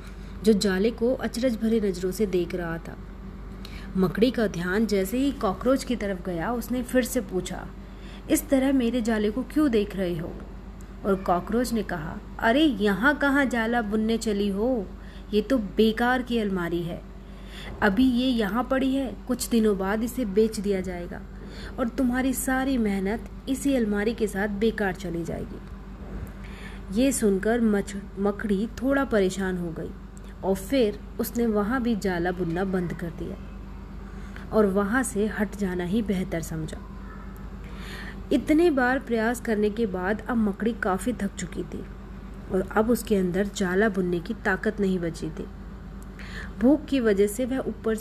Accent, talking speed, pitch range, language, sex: native, 155 wpm, 195-245 Hz, Hindi, female